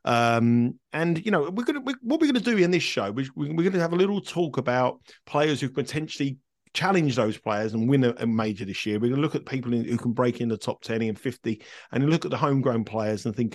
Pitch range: 110-145 Hz